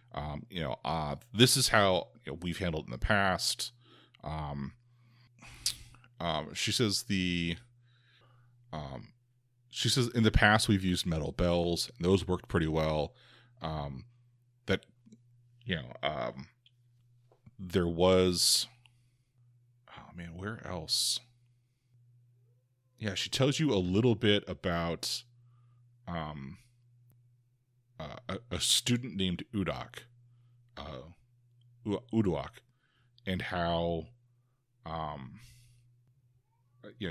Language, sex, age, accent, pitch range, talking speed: English, male, 30-49, American, 85-120 Hz, 105 wpm